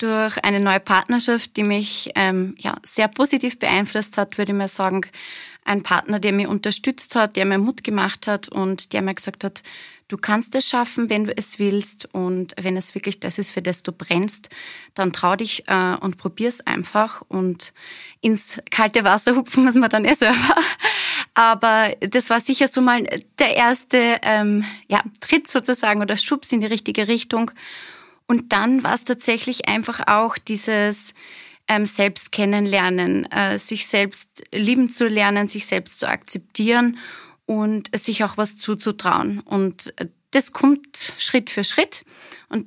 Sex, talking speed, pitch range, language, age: female, 165 wpm, 195-235 Hz, German, 20-39